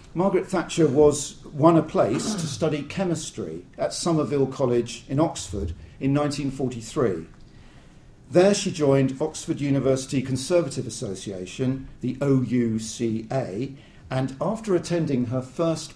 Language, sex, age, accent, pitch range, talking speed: English, male, 50-69, British, 125-160 Hz, 115 wpm